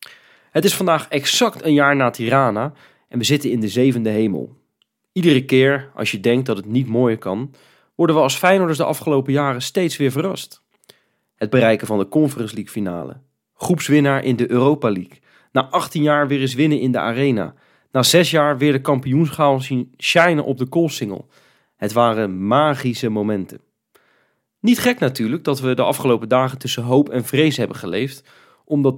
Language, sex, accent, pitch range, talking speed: Dutch, male, Dutch, 115-145 Hz, 180 wpm